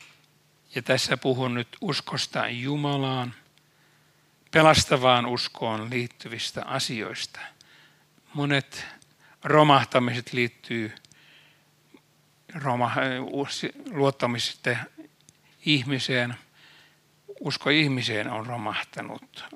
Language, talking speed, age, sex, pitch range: Finnish, 60 wpm, 60-79, male, 125-145 Hz